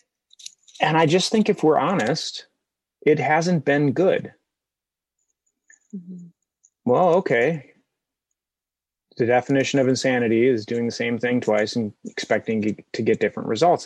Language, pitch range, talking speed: English, 105-175 Hz, 125 wpm